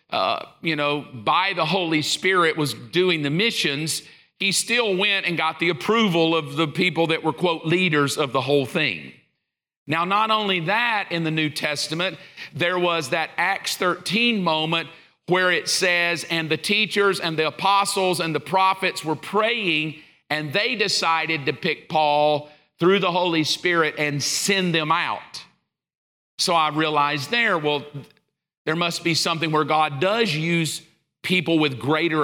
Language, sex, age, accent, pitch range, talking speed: English, male, 50-69, American, 155-185 Hz, 160 wpm